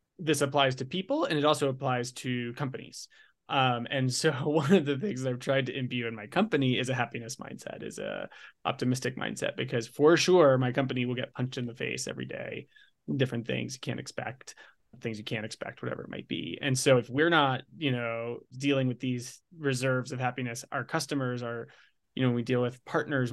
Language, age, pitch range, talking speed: English, 20-39, 120-145 Hz, 210 wpm